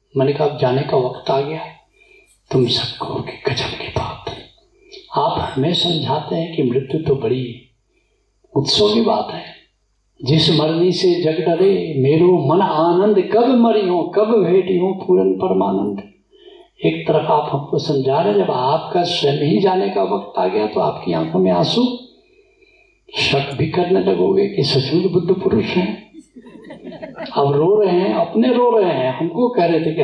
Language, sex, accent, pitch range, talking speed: Hindi, male, native, 150-245 Hz, 170 wpm